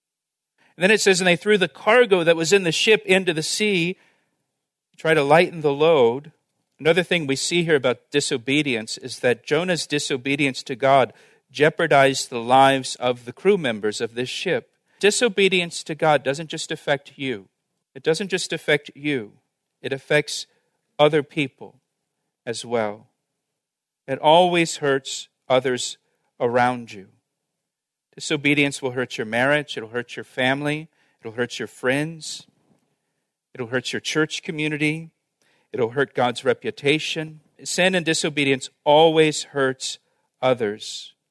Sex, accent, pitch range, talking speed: male, American, 130-160 Hz, 140 wpm